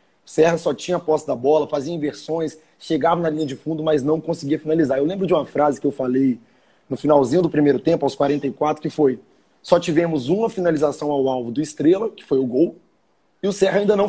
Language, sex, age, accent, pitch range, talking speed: Portuguese, male, 20-39, Brazilian, 150-175 Hz, 225 wpm